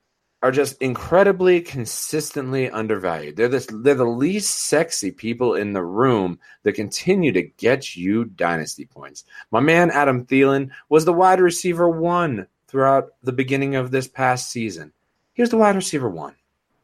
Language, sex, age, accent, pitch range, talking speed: English, male, 30-49, American, 110-165 Hz, 155 wpm